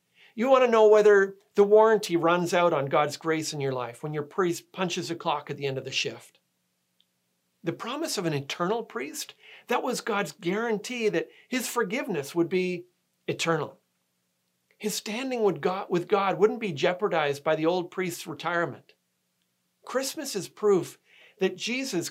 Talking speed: 165 wpm